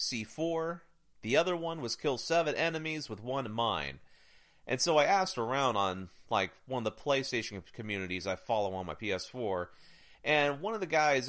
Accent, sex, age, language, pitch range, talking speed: American, male, 30-49, English, 105-140 Hz, 175 wpm